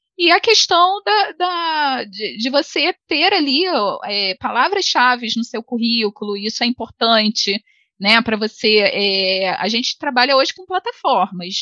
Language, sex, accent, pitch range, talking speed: Portuguese, female, Brazilian, 215-285 Hz, 145 wpm